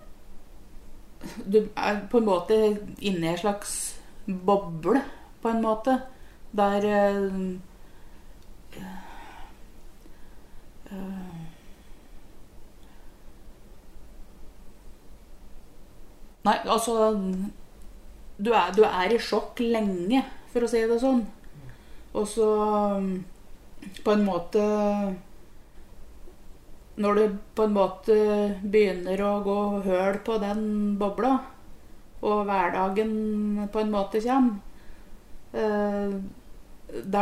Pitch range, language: 195-220 Hz, English